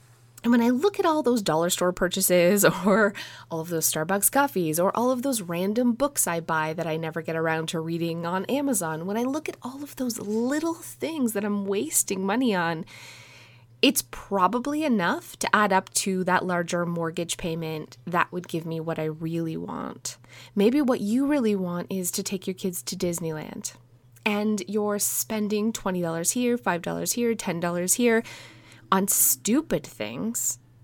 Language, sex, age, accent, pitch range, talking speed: English, female, 20-39, American, 170-245 Hz, 175 wpm